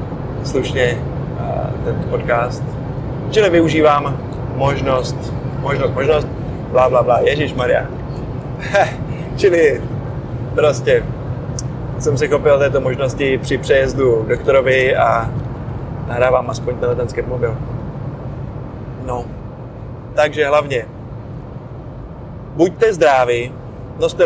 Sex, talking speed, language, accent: male, 80 wpm, Czech, native